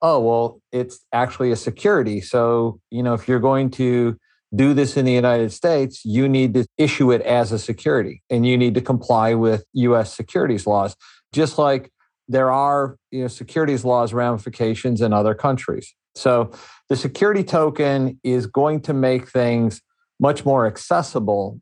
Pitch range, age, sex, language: 115-135 Hz, 50-69, male, English